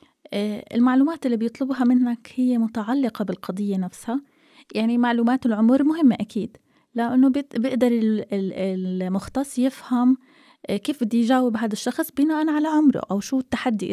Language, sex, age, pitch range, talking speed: Arabic, female, 20-39, 205-270 Hz, 120 wpm